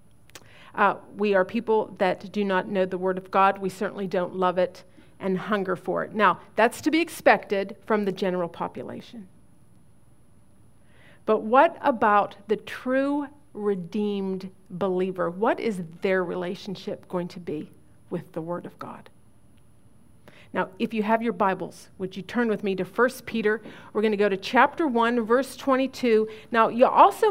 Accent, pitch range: American, 190-250 Hz